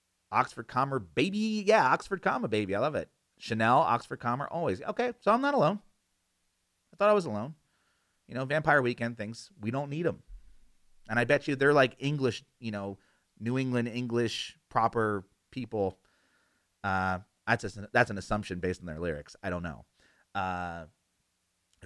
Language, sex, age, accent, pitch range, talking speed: English, male, 30-49, American, 95-130 Hz, 170 wpm